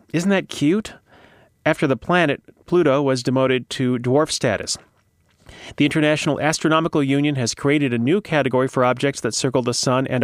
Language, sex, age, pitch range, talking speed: English, male, 30-49, 120-155 Hz, 165 wpm